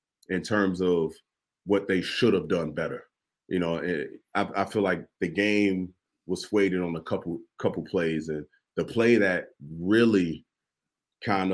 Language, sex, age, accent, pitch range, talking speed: English, male, 30-49, American, 90-110 Hz, 160 wpm